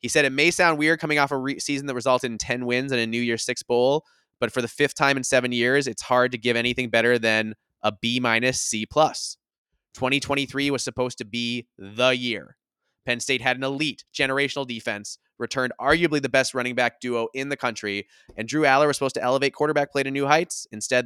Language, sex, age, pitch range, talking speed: English, male, 20-39, 110-135 Hz, 215 wpm